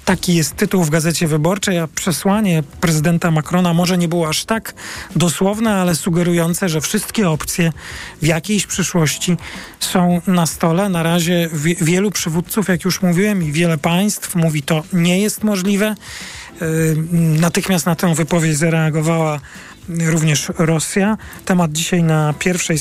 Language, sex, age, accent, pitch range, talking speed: Polish, male, 40-59, native, 160-185 Hz, 140 wpm